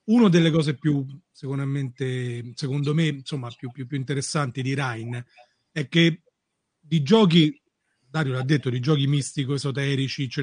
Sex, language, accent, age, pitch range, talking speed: male, Italian, native, 40-59, 135-170 Hz, 140 wpm